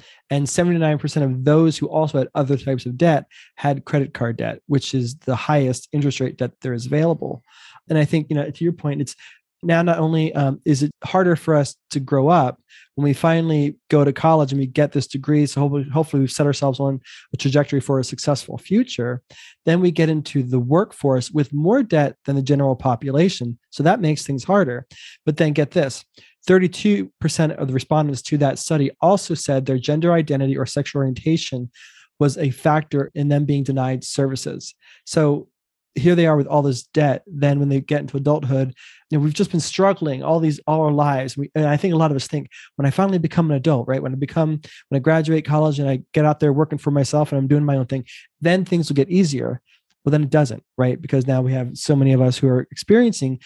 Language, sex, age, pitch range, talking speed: English, male, 20-39, 135-155 Hz, 225 wpm